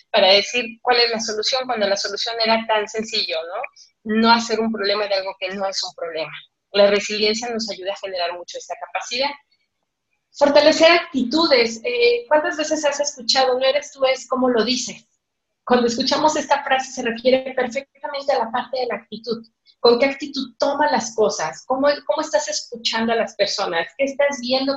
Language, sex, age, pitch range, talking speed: Spanish, female, 30-49, 205-265 Hz, 185 wpm